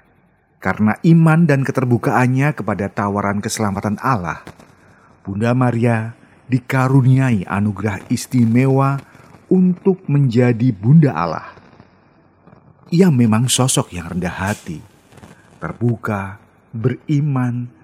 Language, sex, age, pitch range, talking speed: Indonesian, male, 40-59, 105-140 Hz, 85 wpm